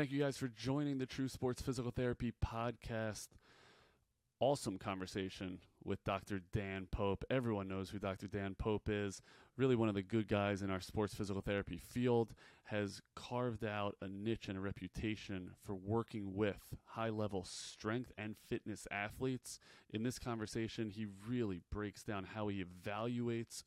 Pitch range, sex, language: 100-120 Hz, male, English